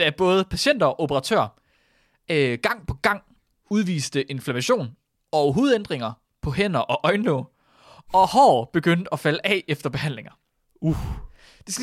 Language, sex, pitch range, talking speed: Danish, male, 135-210 Hz, 140 wpm